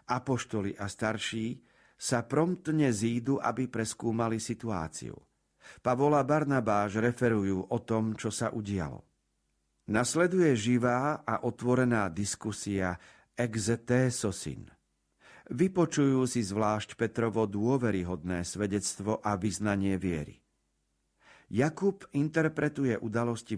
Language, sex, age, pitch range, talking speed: Slovak, male, 50-69, 105-135 Hz, 90 wpm